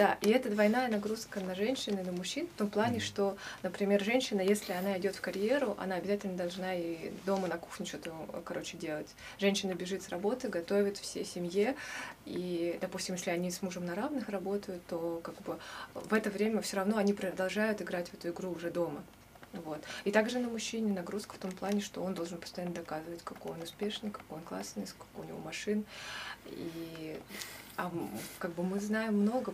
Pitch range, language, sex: 175-205 Hz, Russian, female